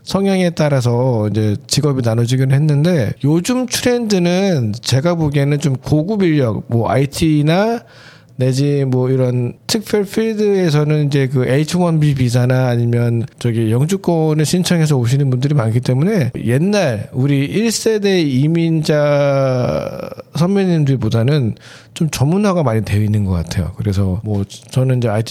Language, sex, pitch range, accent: Korean, male, 125-165 Hz, native